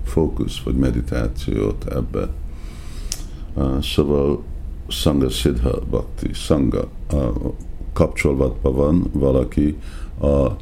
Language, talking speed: Hungarian, 80 wpm